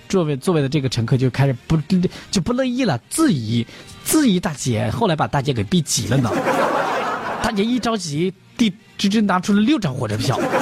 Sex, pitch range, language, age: male, 130-200 Hz, Chinese, 20-39